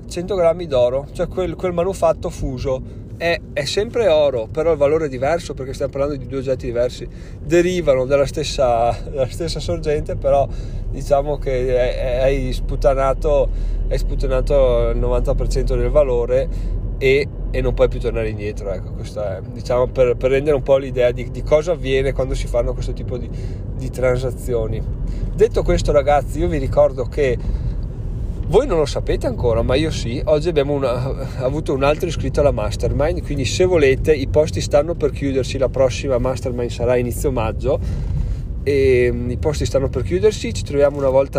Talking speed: 170 wpm